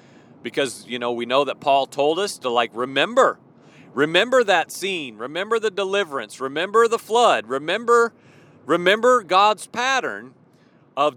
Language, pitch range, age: English, 160-235 Hz, 40-59